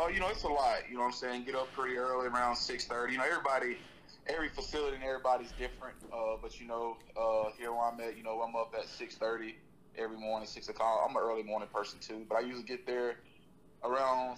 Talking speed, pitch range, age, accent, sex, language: 240 wpm, 115-125 Hz, 20-39, American, male, English